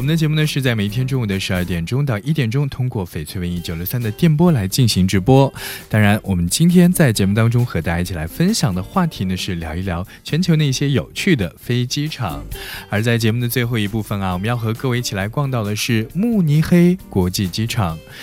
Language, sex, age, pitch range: Chinese, male, 20-39, 95-140 Hz